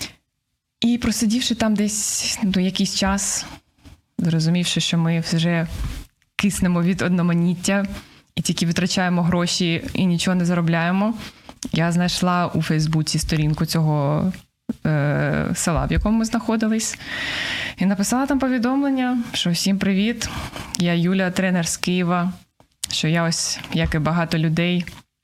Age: 20-39